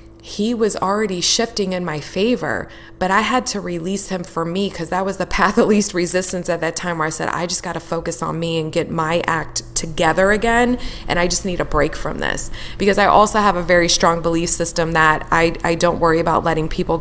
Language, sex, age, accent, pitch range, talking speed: English, female, 20-39, American, 155-185 Hz, 235 wpm